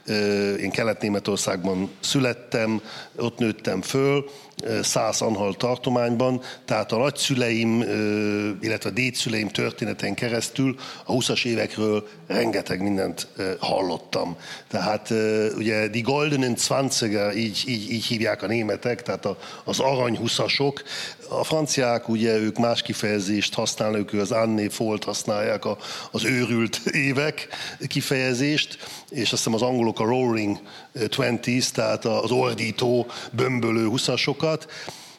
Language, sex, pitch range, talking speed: Hungarian, male, 110-130 Hz, 115 wpm